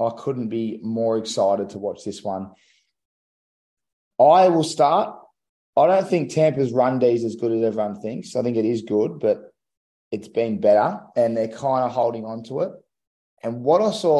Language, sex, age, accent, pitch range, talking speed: English, male, 20-39, Australian, 115-140 Hz, 190 wpm